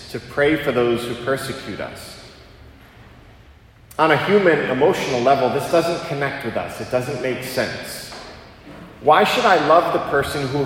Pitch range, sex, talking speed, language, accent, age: 110-160 Hz, male, 160 wpm, English, American, 40-59